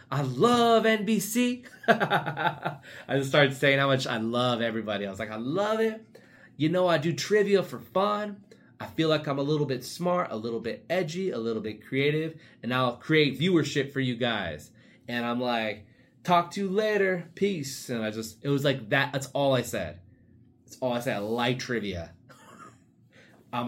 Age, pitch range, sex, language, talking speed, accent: 20-39, 105-140 Hz, male, English, 190 wpm, American